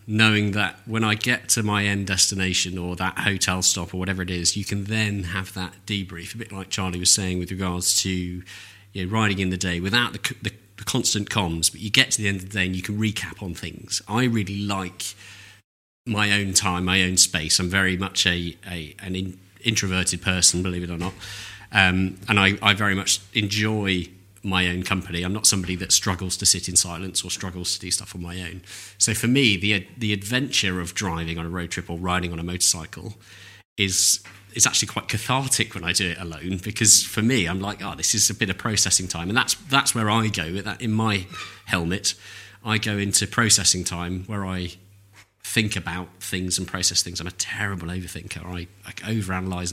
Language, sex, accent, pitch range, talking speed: English, male, British, 90-105 Hz, 215 wpm